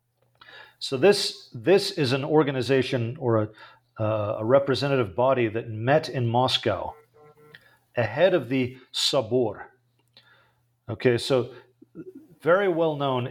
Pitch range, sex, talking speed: 115-135 Hz, male, 115 wpm